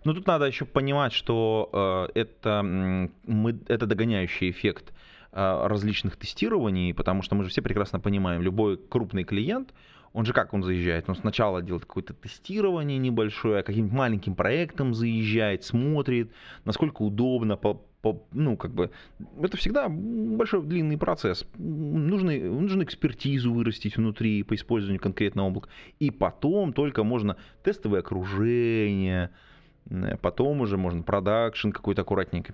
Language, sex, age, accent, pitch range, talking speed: Russian, male, 20-39, native, 90-125 Hz, 130 wpm